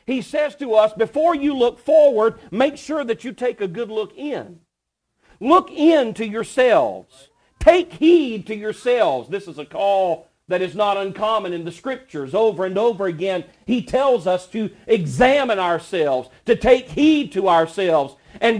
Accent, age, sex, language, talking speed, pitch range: American, 50-69, male, English, 170 wpm, 180-255 Hz